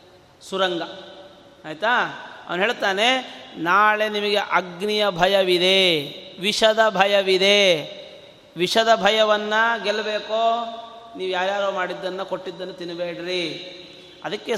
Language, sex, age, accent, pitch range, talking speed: Kannada, male, 30-49, native, 180-230 Hz, 80 wpm